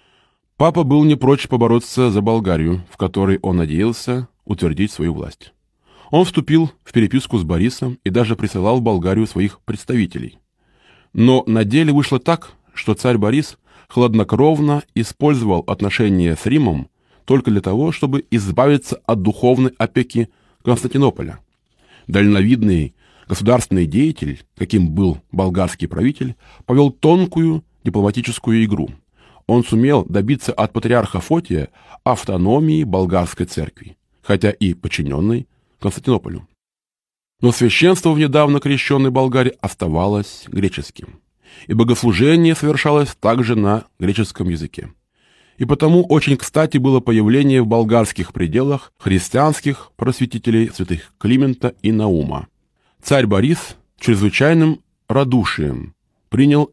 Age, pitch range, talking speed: 20-39, 100-135 Hz, 115 wpm